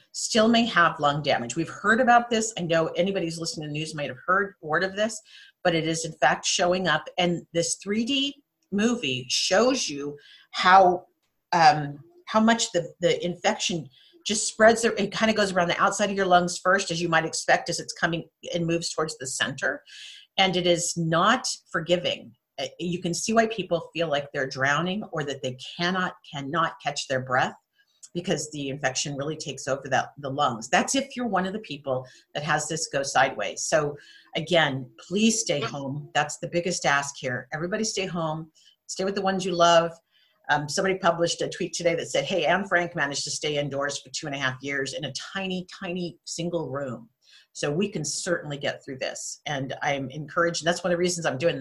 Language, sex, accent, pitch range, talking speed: English, female, American, 145-195 Hz, 200 wpm